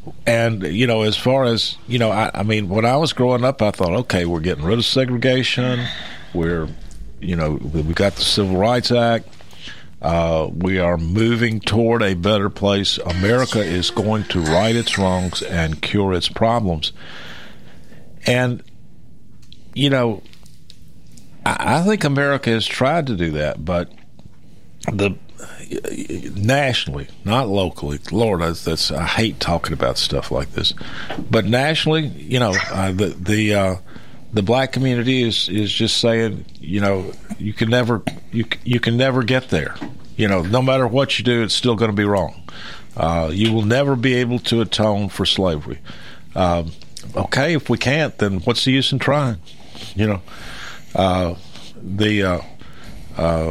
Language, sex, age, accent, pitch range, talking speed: English, male, 50-69, American, 90-120 Hz, 160 wpm